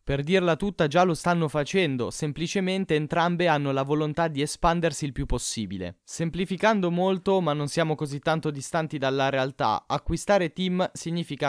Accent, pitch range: native, 130-155 Hz